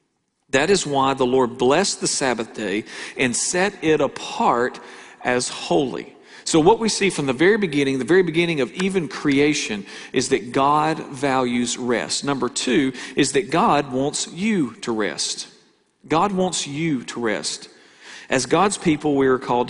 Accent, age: American, 40-59